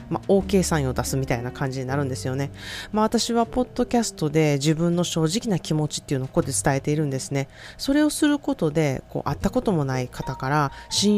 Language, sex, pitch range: Japanese, female, 145-195 Hz